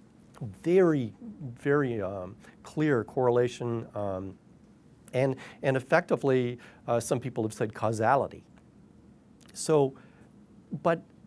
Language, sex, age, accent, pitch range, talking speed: English, male, 40-59, American, 115-150 Hz, 90 wpm